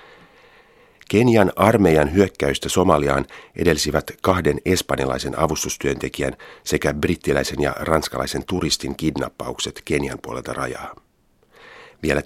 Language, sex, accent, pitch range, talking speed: Finnish, male, native, 70-90 Hz, 90 wpm